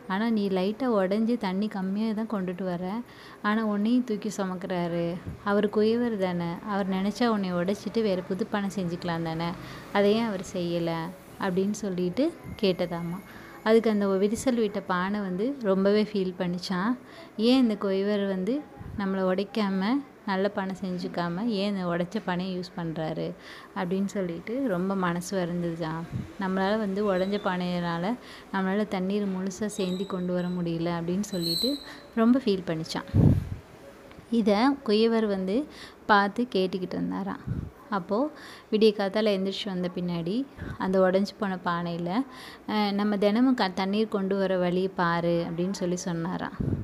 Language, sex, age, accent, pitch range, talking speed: Tamil, female, 30-49, native, 185-220 Hz, 130 wpm